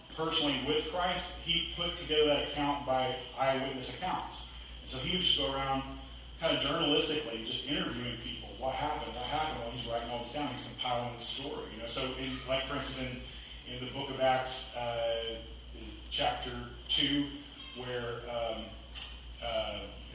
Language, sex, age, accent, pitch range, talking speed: English, male, 30-49, American, 115-135 Hz, 165 wpm